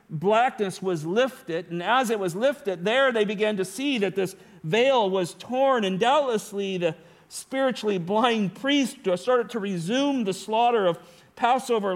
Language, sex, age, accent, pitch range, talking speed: English, male, 50-69, American, 170-240 Hz, 155 wpm